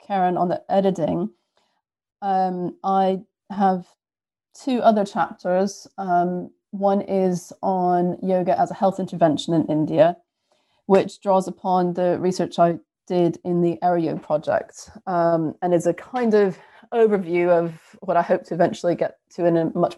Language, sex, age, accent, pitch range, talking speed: English, female, 30-49, British, 170-195 Hz, 150 wpm